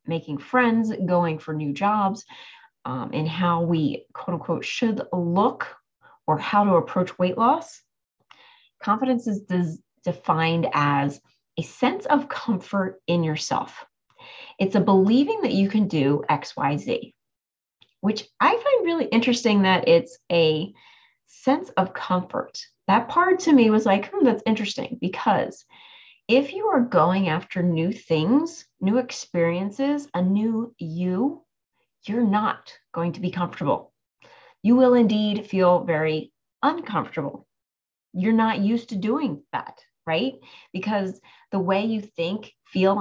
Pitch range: 175-240 Hz